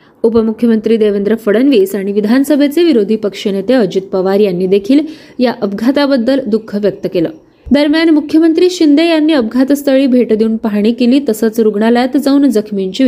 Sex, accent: female, native